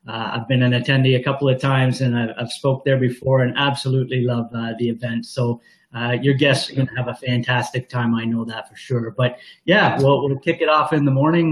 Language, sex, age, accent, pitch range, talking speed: English, male, 30-49, American, 130-165 Hz, 240 wpm